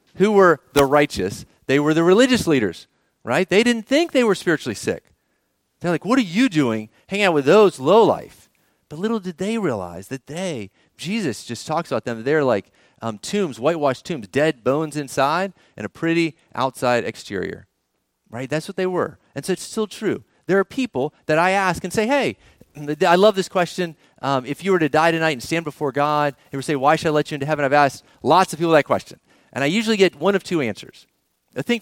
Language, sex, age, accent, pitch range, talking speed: English, male, 40-59, American, 125-175 Hz, 215 wpm